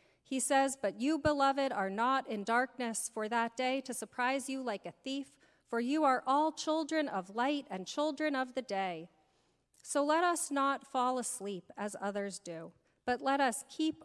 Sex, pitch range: female, 210-275 Hz